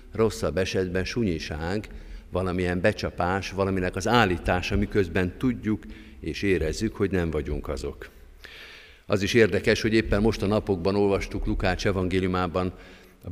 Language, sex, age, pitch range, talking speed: Hungarian, male, 50-69, 85-105 Hz, 125 wpm